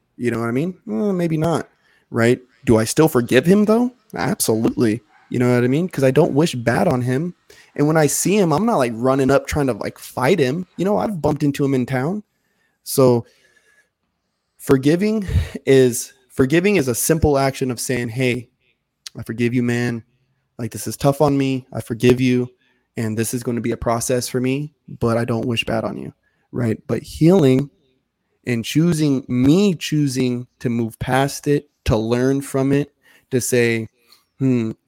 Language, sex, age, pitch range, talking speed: English, male, 20-39, 120-140 Hz, 190 wpm